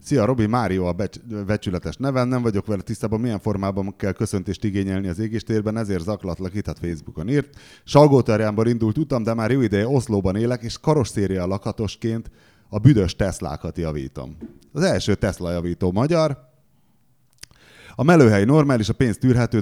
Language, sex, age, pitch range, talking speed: Hungarian, male, 30-49, 85-115 Hz, 155 wpm